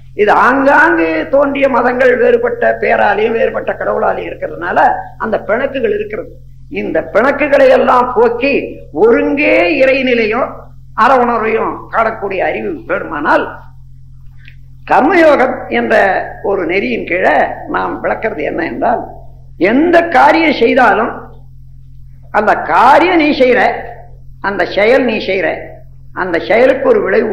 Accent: native